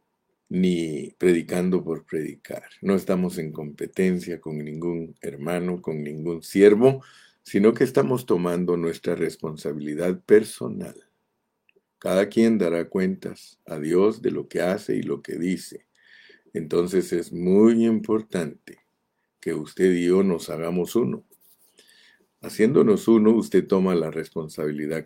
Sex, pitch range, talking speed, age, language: male, 85-100 Hz, 125 wpm, 50-69, Spanish